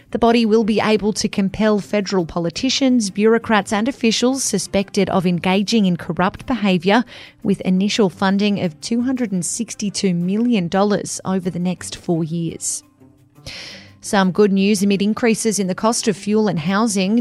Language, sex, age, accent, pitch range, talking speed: English, female, 30-49, Australian, 185-220 Hz, 145 wpm